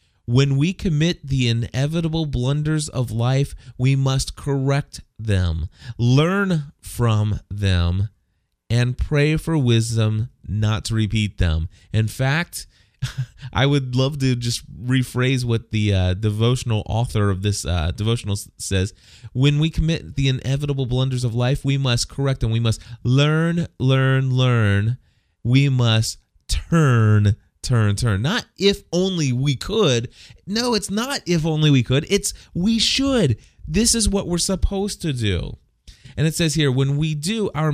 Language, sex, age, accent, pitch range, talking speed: English, male, 30-49, American, 110-155 Hz, 150 wpm